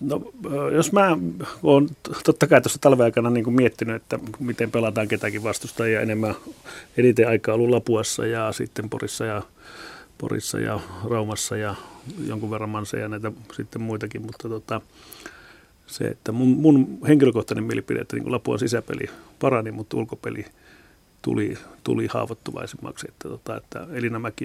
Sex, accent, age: male, native, 30-49